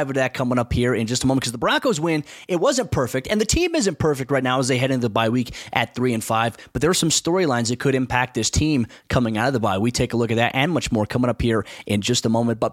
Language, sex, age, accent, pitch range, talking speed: English, male, 20-39, American, 120-150 Hz, 310 wpm